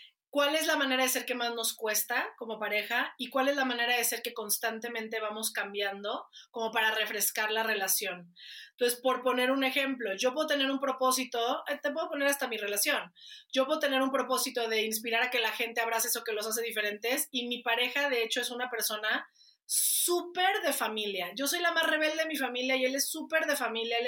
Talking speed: 215 wpm